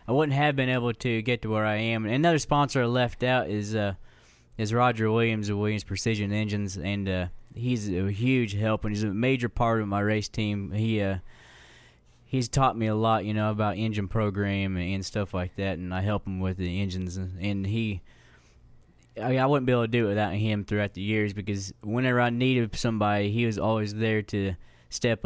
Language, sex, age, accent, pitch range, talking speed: English, male, 20-39, American, 100-115 Hz, 220 wpm